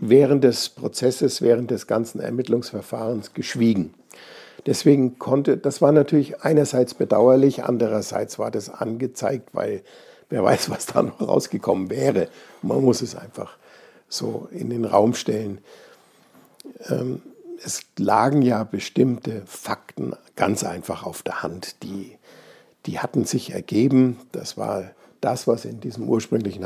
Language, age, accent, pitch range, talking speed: German, 60-79, German, 110-135 Hz, 130 wpm